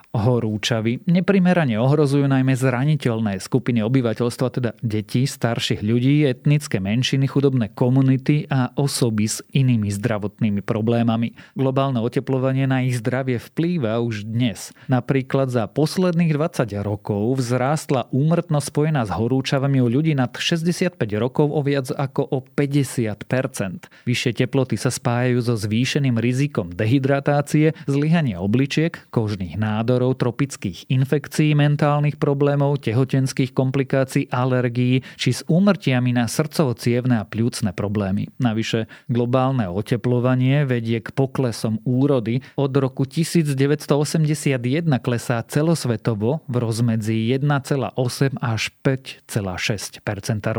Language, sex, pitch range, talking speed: Slovak, male, 120-140 Hz, 110 wpm